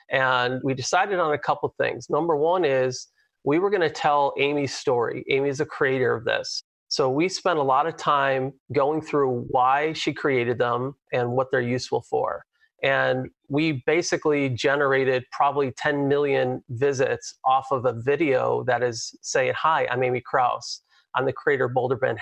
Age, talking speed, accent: 40-59, 180 wpm, American